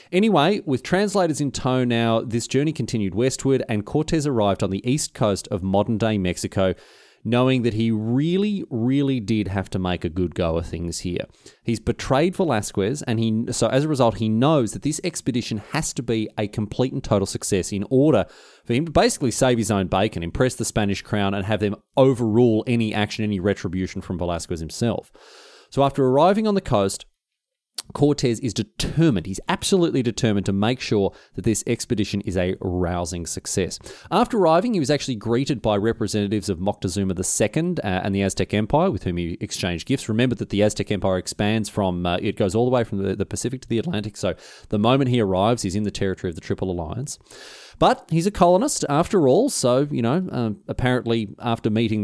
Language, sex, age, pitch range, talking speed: English, male, 30-49, 100-130 Hz, 195 wpm